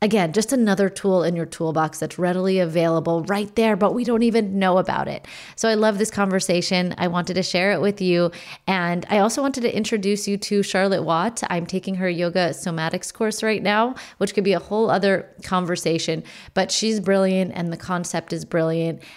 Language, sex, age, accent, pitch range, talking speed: English, female, 30-49, American, 170-200 Hz, 200 wpm